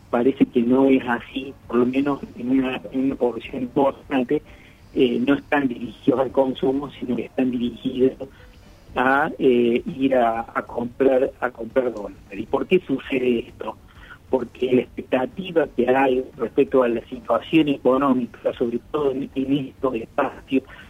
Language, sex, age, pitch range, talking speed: Spanish, male, 50-69, 120-145 Hz, 155 wpm